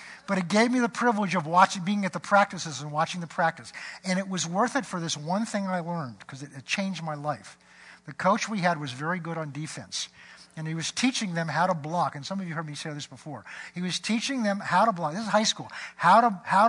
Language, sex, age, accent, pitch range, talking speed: English, male, 50-69, American, 155-205 Hz, 255 wpm